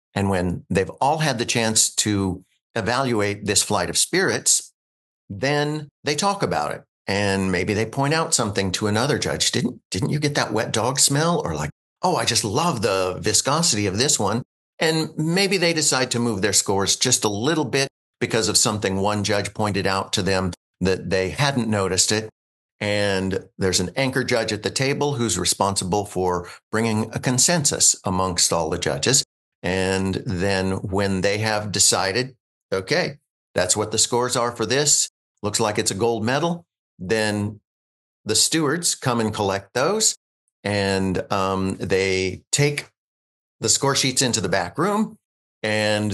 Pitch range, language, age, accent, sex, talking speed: 95-125 Hz, English, 50-69, American, male, 170 wpm